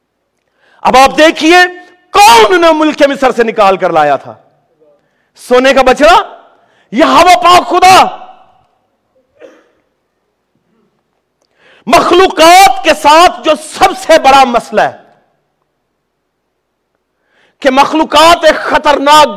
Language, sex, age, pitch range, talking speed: Urdu, male, 50-69, 270-355 Hz, 100 wpm